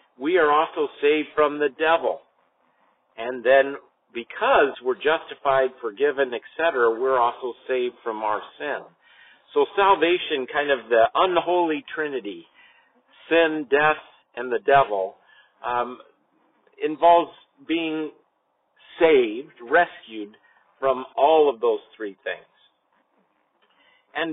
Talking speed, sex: 110 wpm, male